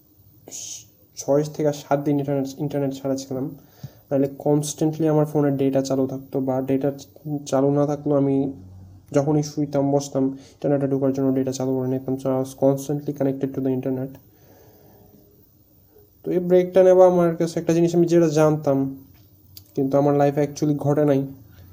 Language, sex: Bengali, male